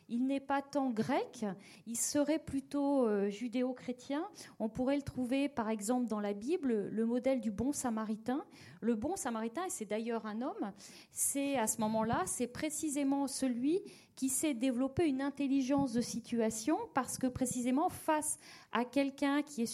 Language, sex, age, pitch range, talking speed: French, female, 40-59, 230-290 Hz, 165 wpm